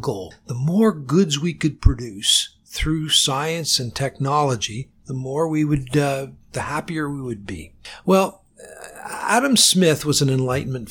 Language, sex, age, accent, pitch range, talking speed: English, male, 50-69, American, 135-165 Hz, 145 wpm